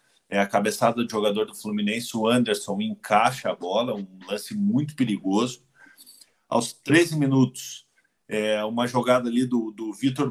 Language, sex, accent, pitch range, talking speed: Portuguese, male, Brazilian, 105-130 Hz, 150 wpm